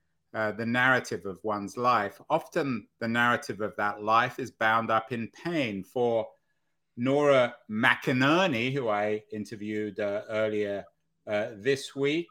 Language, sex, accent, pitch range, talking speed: English, male, British, 110-140 Hz, 135 wpm